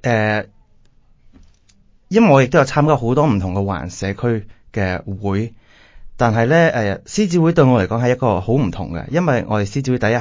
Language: Chinese